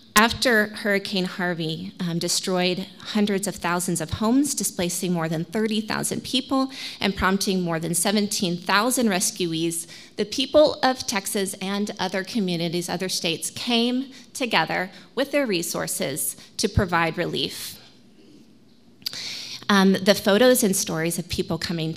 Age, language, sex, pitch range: 30-49, English, female, 175-215 Hz